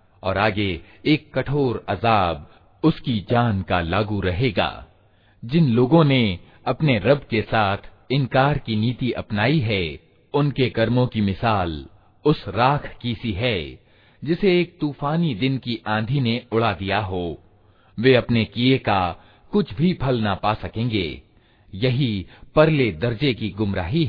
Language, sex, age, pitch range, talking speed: Hindi, male, 40-59, 100-130 Hz, 140 wpm